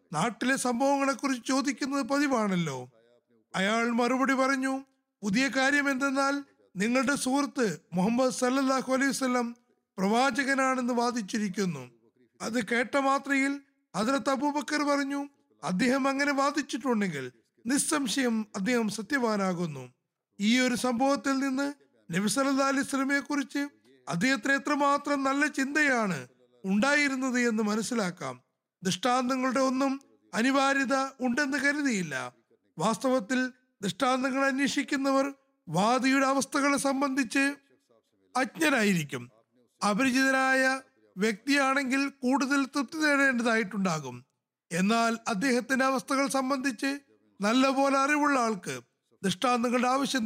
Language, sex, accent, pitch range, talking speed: Malayalam, male, native, 215-275 Hz, 85 wpm